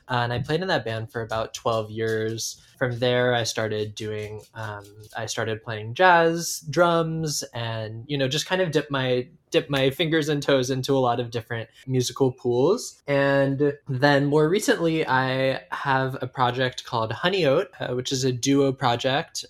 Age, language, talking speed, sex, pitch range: 20-39, English, 180 wpm, male, 115-145 Hz